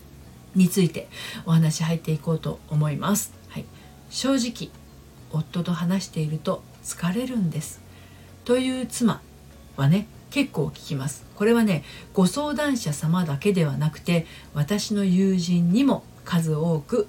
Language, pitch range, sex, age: Japanese, 150-215 Hz, female, 50-69